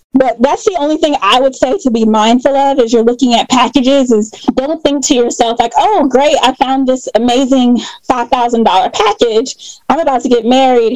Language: English